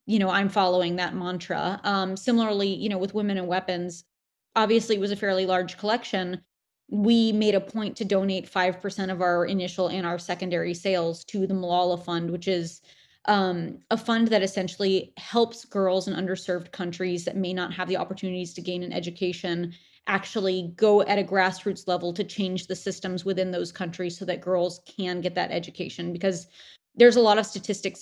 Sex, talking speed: female, 190 wpm